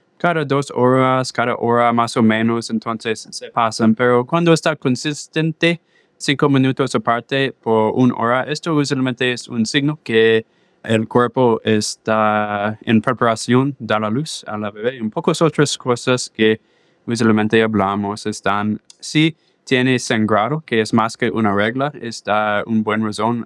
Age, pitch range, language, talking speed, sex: 20-39, 105-135 Hz, English, 150 wpm, male